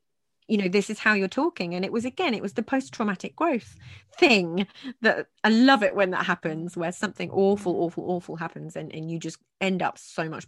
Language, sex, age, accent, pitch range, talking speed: English, female, 20-39, British, 170-205 Hz, 220 wpm